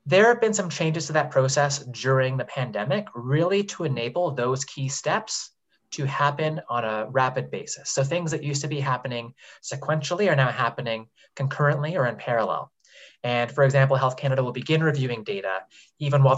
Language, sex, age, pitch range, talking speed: English, male, 20-39, 125-150 Hz, 180 wpm